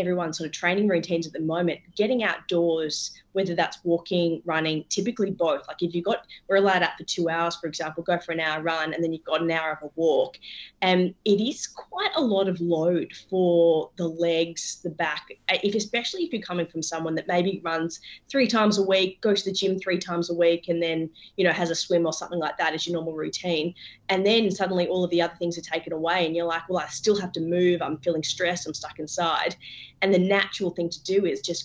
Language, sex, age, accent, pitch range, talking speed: English, female, 20-39, Australian, 165-190 Hz, 240 wpm